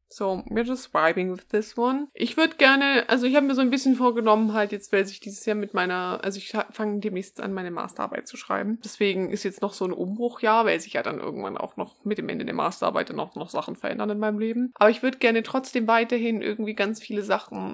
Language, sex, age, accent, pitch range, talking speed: German, female, 20-39, German, 185-230 Hz, 245 wpm